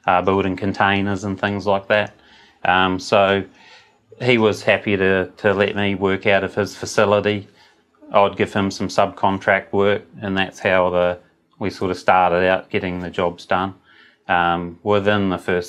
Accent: Australian